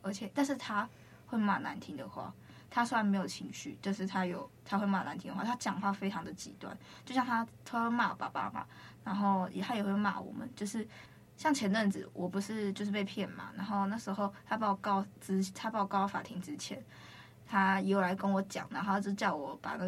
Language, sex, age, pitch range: Chinese, female, 20-39, 195-230 Hz